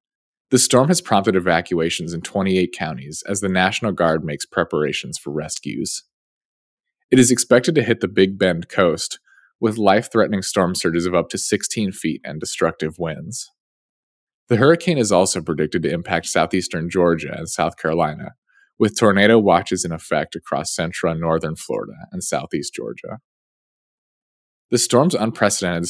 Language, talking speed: English, 150 wpm